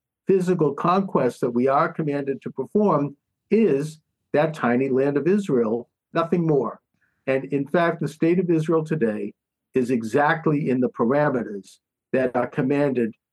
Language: English